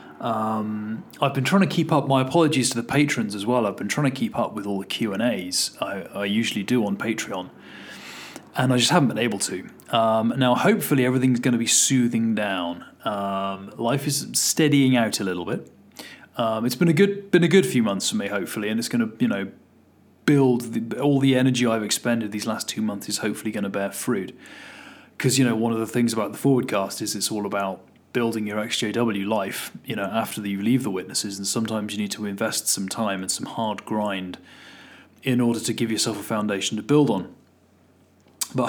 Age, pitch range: 30-49, 105-130 Hz